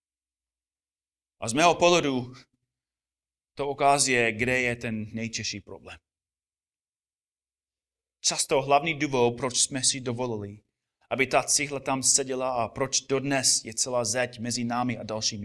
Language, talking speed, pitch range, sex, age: Czech, 130 wpm, 100-155 Hz, male, 30-49